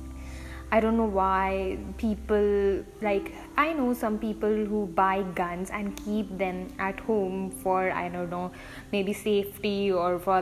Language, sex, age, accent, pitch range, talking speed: English, female, 10-29, Indian, 185-220 Hz, 150 wpm